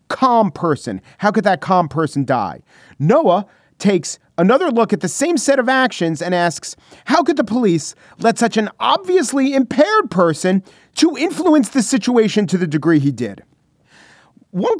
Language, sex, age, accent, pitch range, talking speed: English, male, 40-59, American, 150-200 Hz, 160 wpm